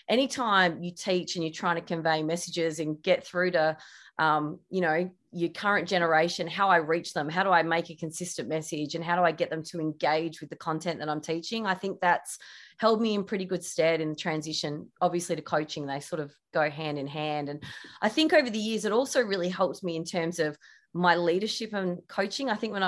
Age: 30-49